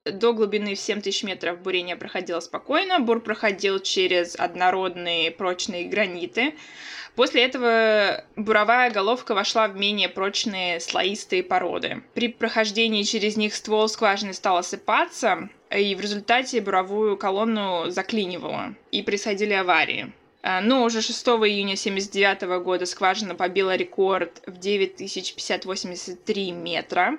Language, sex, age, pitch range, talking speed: Russian, female, 20-39, 185-220 Hz, 120 wpm